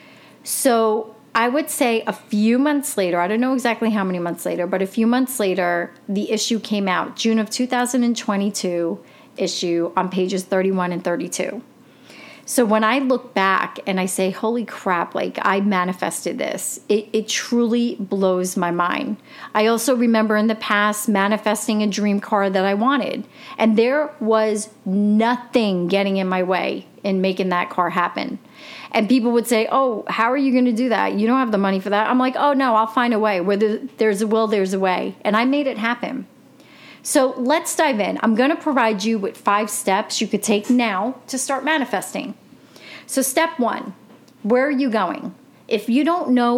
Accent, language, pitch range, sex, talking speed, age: American, English, 195-255 Hz, female, 190 wpm, 30-49